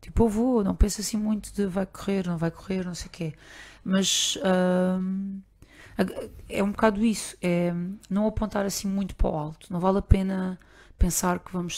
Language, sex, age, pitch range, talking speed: Portuguese, female, 30-49, 175-205 Hz, 195 wpm